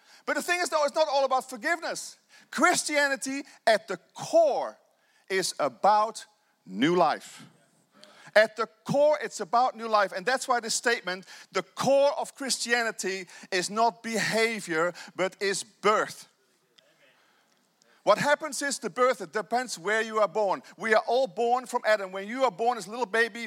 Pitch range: 190-255 Hz